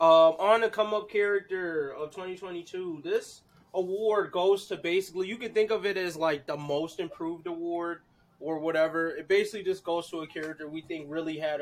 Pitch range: 150-190 Hz